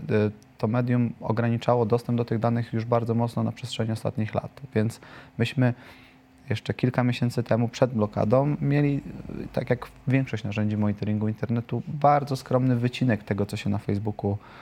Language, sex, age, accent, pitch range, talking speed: Polish, male, 30-49, native, 110-130 Hz, 150 wpm